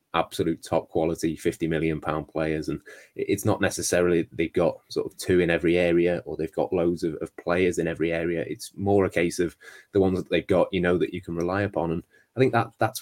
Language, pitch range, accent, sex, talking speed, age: English, 85-95 Hz, British, male, 235 wpm, 20-39